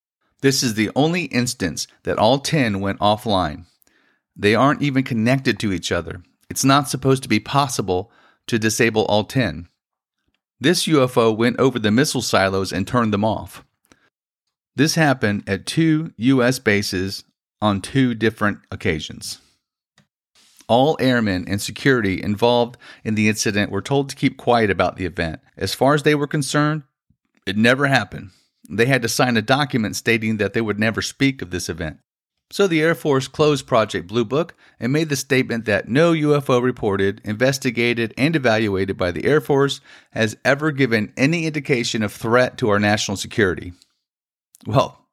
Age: 40-59